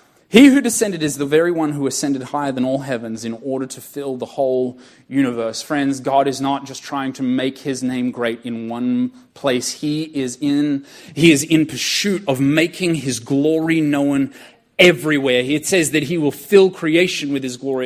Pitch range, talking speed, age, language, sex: 145-235 Hz, 190 wpm, 30-49, English, male